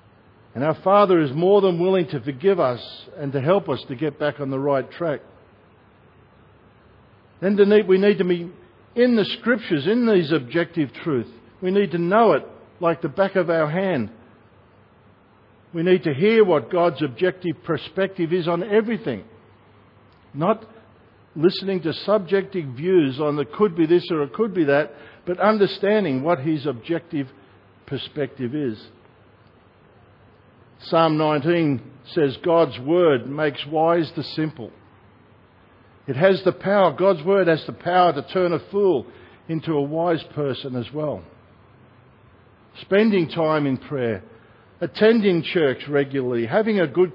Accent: Australian